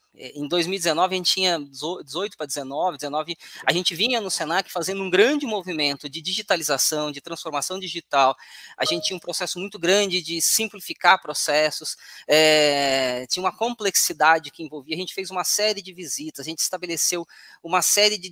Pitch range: 150-185 Hz